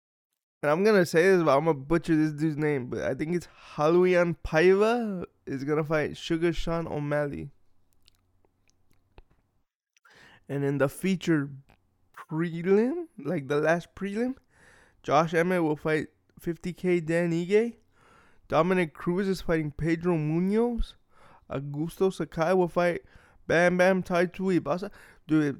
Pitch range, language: 140-180 Hz, English